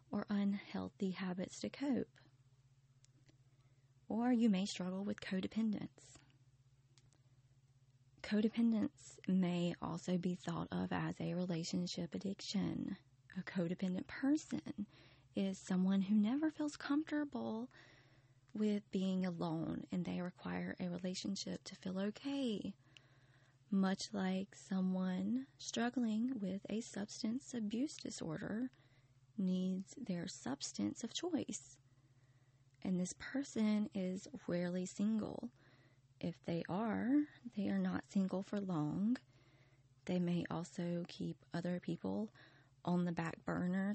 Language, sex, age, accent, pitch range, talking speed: English, female, 30-49, American, 135-215 Hz, 110 wpm